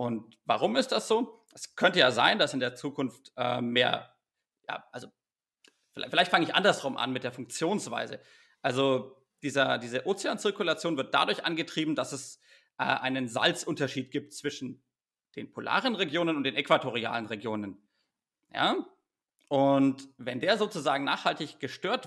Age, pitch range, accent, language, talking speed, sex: 30-49, 125-160 Hz, German, German, 145 wpm, male